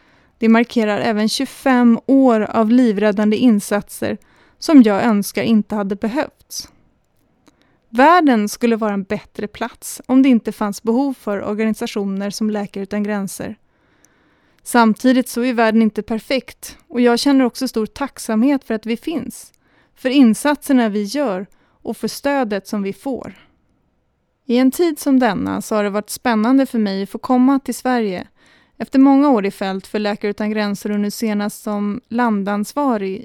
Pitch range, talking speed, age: 210-255 Hz, 160 wpm, 30-49